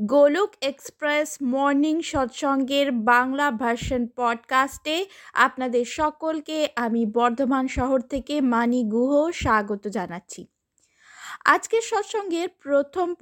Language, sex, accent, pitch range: Bengali, female, native, 240-340 Hz